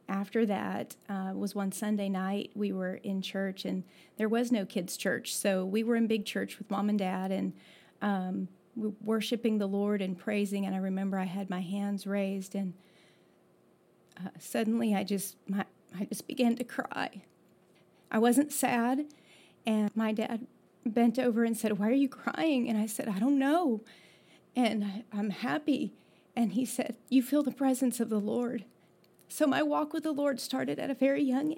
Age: 40-59